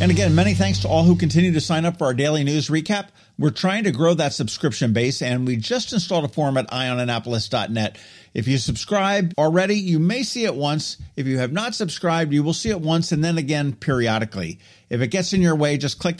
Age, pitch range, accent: 50-69, 110-160 Hz, American